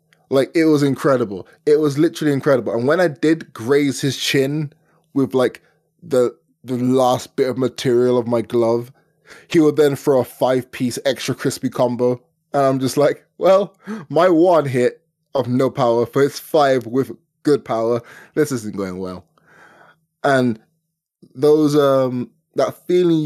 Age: 20-39